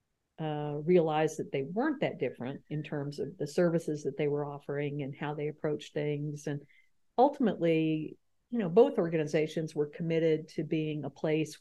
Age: 50-69